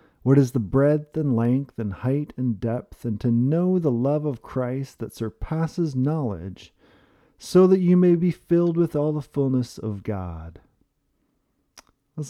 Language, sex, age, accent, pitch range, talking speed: English, male, 40-59, American, 110-150 Hz, 160 wpm